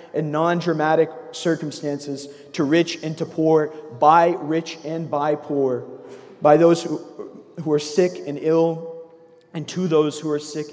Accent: American